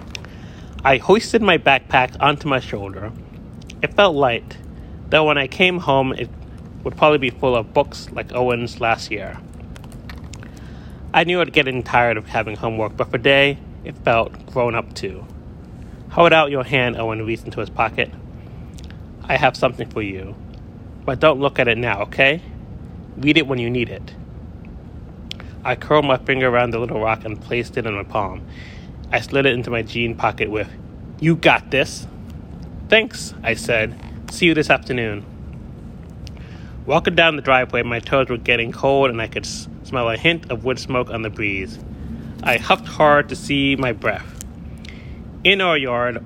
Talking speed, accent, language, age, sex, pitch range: 170 wpm, American, English, 30-49, male, 110-135 Hz